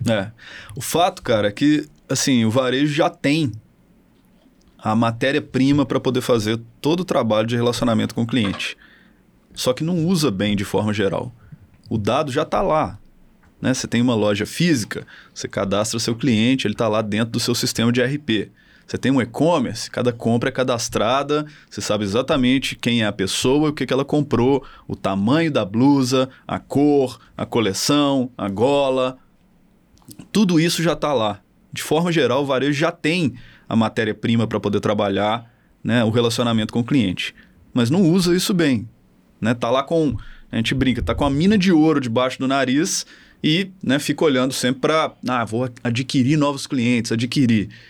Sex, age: male, 20-39